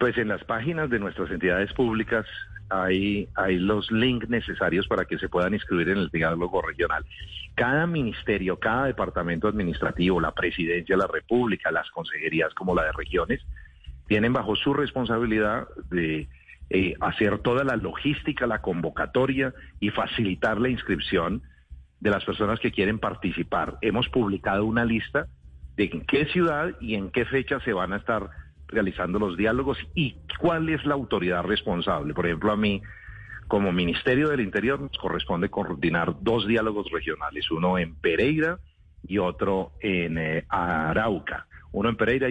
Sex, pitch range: male, 90-125 Hz